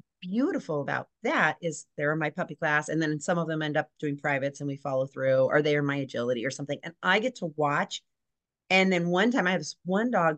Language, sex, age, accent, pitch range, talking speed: English, female, 30-49, American, 150-200 Hz, 250 wpm